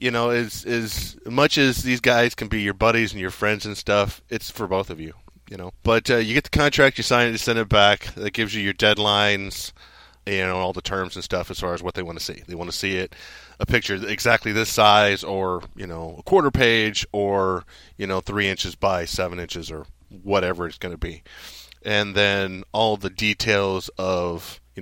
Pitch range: 95-115 Hz